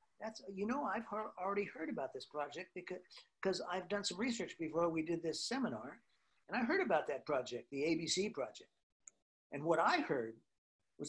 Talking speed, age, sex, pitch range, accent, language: 190 wpm, 50-69, male, 140-205 Hz, American, English